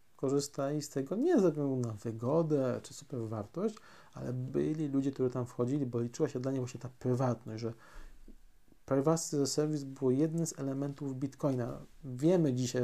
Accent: native